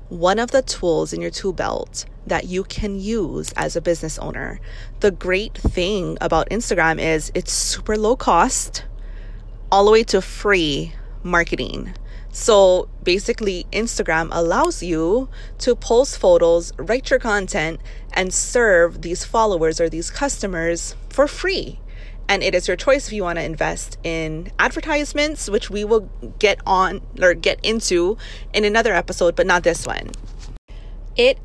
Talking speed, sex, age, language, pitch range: 155 wpm, female, 20-39, English, 165-220 Hz